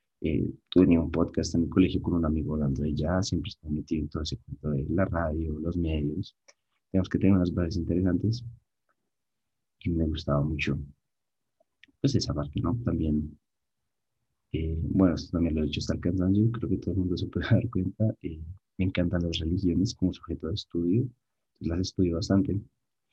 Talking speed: 185 wpm